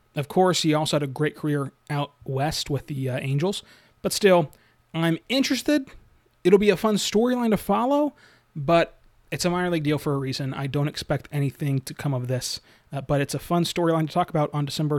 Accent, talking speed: American, 210 wpm